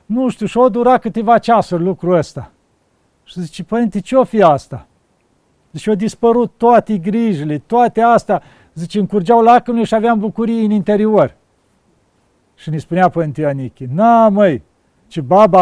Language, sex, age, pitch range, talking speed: Romanian, male, 50-69, 165-215 Hz, 155 wpm